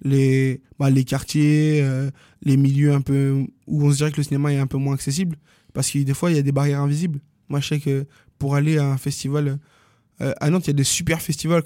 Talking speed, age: 250 wpm, 20-39